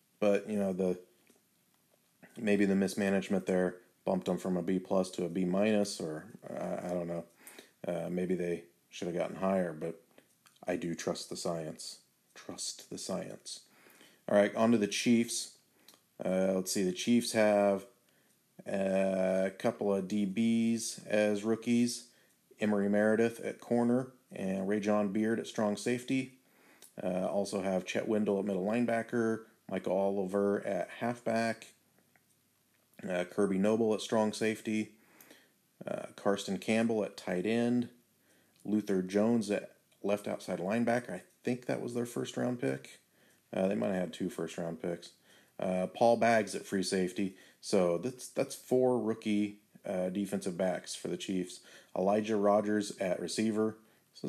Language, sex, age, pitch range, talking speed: English, male, 30-49, 95-110 Hz, 150 wpm